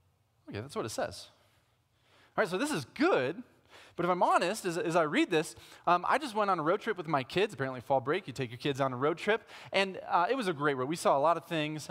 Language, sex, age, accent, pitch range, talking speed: English, male, 30-49, American, 120-195 Hz, 275 wpm